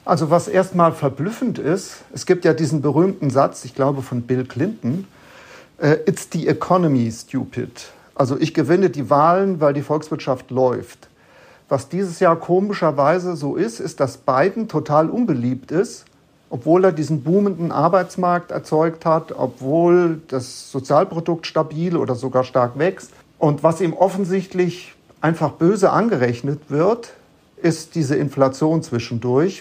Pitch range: 135-175 Hz